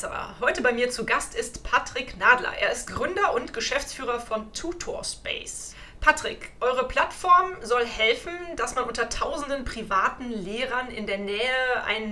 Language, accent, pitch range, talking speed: German, German, 215-250 Hz, 150 wpm